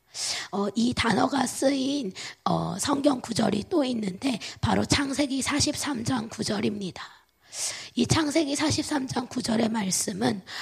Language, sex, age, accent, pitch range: Korean, female, 20-39, native, 200-275 Hz